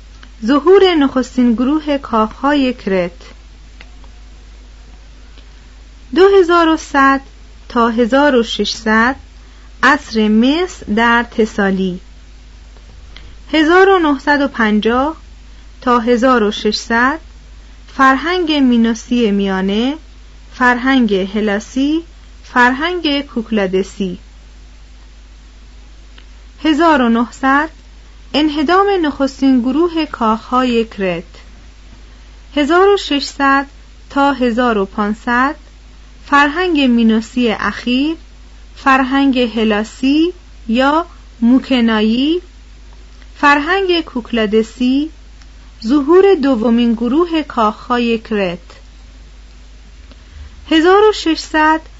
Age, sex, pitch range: 30-49, female, 200-285 Hz